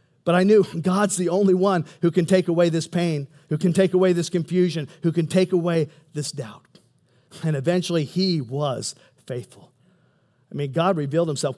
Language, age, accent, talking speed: English, 50-69, American, 180 wpm